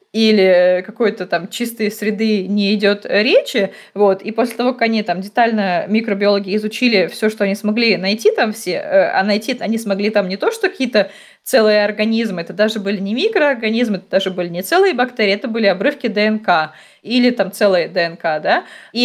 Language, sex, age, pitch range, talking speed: Russian, female, 20-39, 195-235 Hz, 180 wpm